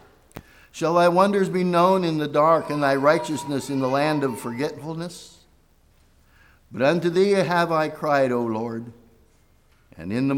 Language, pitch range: English, 105-160 Hz